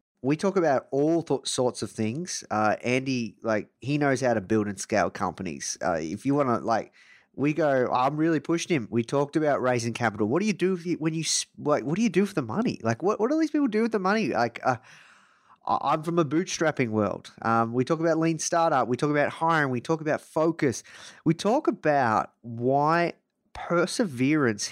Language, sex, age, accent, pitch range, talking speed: English, male, 20-39, Australian, 110-155 Hz, 215 wpm